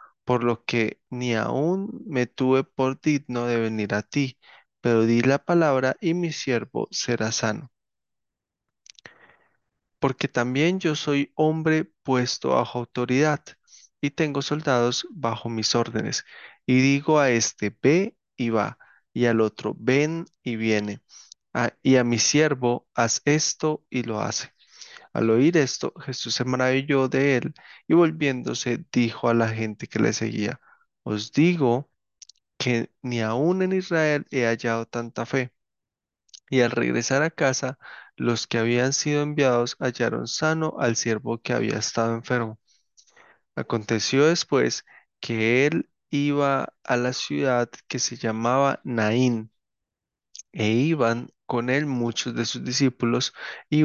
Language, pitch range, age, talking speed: Spanish, 115-145 Hz, 20-39, 140 wpm